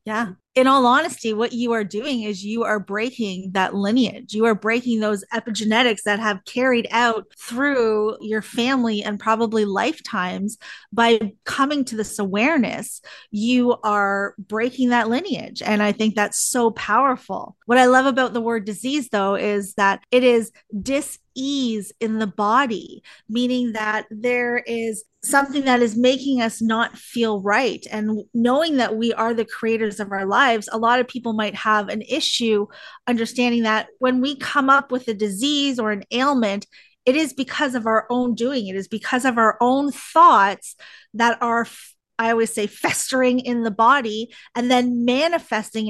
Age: 30-49